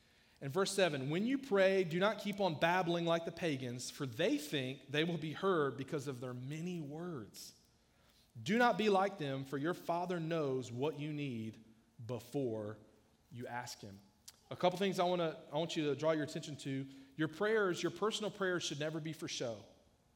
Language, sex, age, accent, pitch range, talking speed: English, male, 40-59, American, 145-180 Hz, 195 wpm